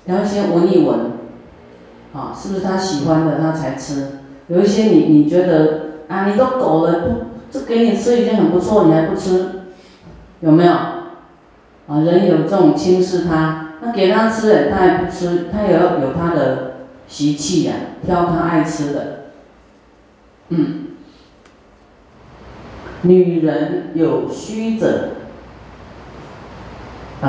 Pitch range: 155-185 Hz